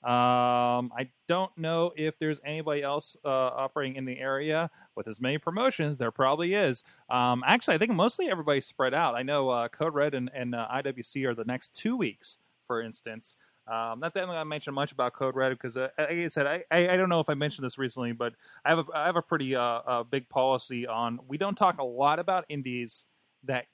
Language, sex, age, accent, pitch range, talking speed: English, male, 30-49, American, 120-150 Hz, 225 wpm